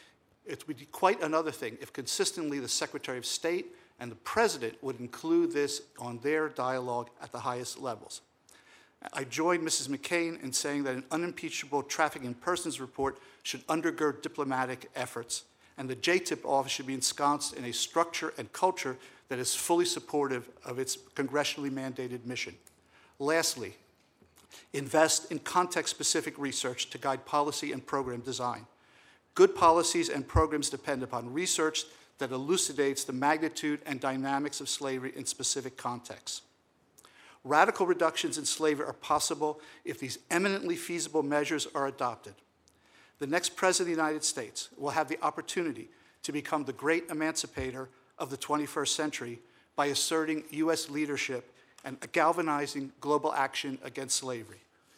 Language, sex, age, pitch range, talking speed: English, male, 50-69, 130-160 Hz, 145 wpm